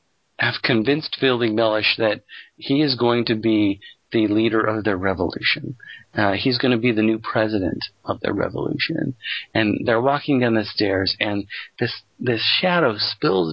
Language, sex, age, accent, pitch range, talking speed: English, male, 40-59, American, 110-140 Hz, 160 wpm